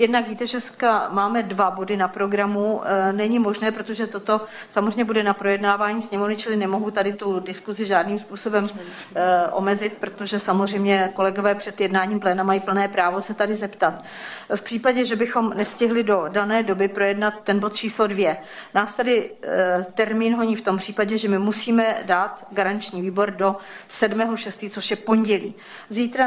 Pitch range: 195-215 Hz